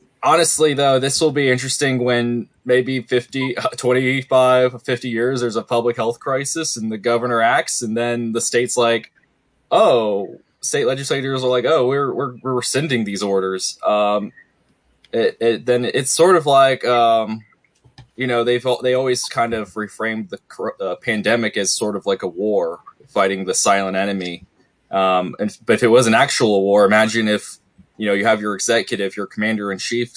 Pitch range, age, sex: 100-125 Hz, 20-39, male